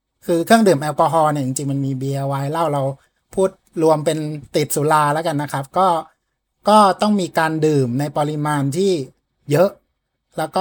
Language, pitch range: Thai, 140-180 Hz